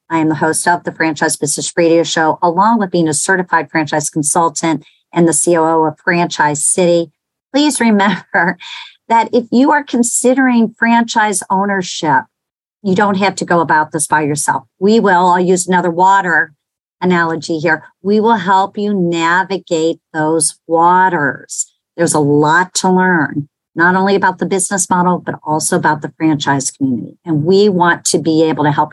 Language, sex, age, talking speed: English, male, 50-69, 170 wpm